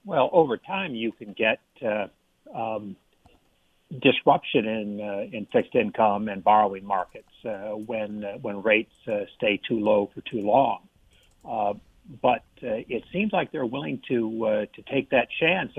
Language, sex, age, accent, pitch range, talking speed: English, male, 60-79, American, 105-120 Hz, 165 wpm